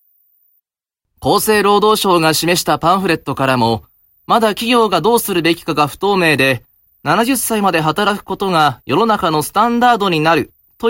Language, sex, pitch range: Japanese, male, 135-210 Hz